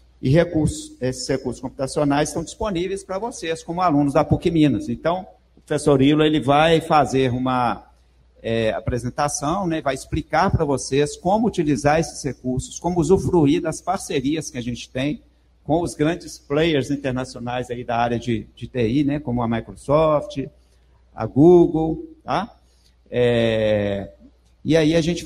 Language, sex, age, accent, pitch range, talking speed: Portuguese, male, 50-69, Brazilian, 115-150 Hz, 150 wpm